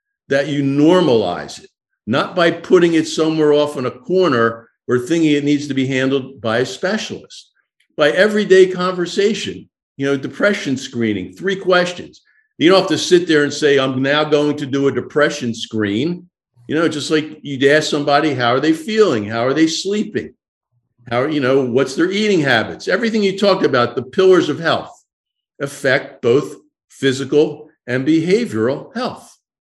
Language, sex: English, male